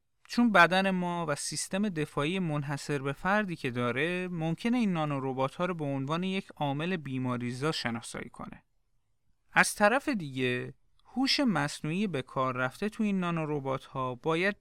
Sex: male